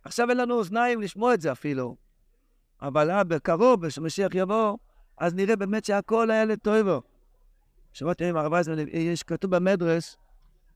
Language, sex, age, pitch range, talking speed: Hebrew, male, 60-79, 160-205 Hz, 135 wpm